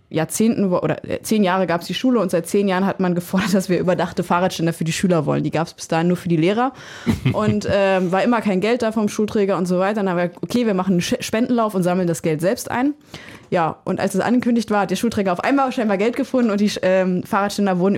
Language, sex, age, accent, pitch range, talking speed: German, female, 20-39, German, 185-210 Hz, 265 wpm